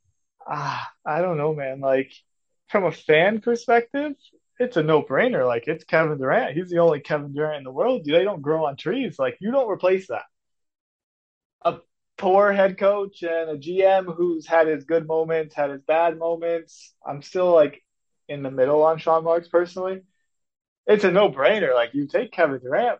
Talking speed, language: 180 wpm, English